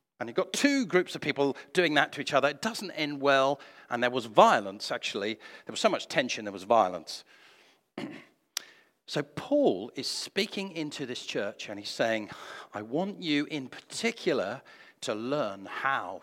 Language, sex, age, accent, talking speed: English, male, 50-69, British, 175 wpm